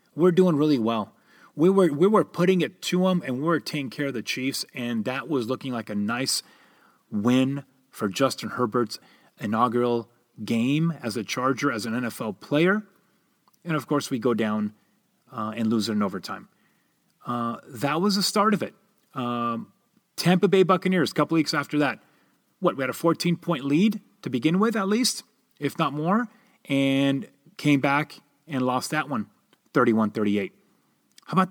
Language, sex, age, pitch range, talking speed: English, male, 30-49, 125-180 Hz, 170 wpm